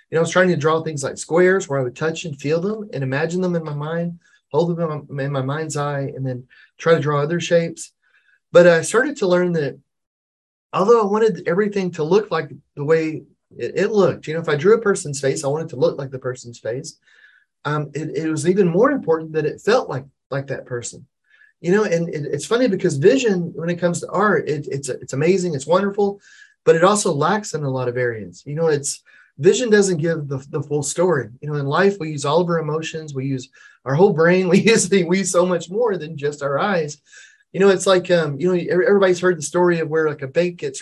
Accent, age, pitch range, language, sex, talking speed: American, 30-49, 145-185 Hz, English, male, 245 wpm